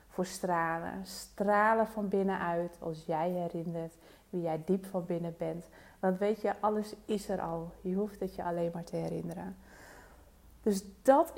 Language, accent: Dutch, Dutch